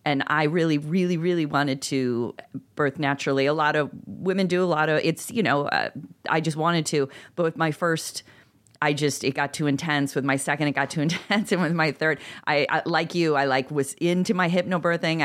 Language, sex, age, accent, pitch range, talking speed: English, female, 40-59, American, 140-175 Hz, 220 wpm